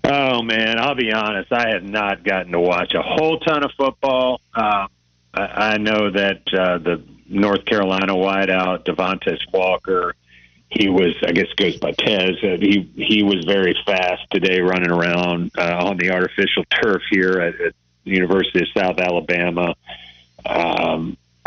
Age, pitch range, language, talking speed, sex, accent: 50-69, 85-105 Hz, English, 160 wpm, male, American